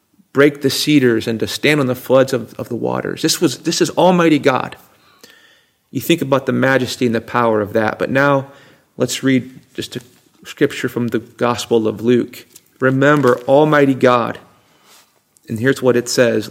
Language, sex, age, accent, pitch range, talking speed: English, male, 40-59, American, 120-145 Hz, 180 wpm